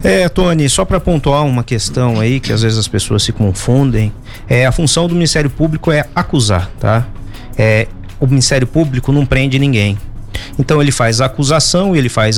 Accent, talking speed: Brazilian, 185 wpm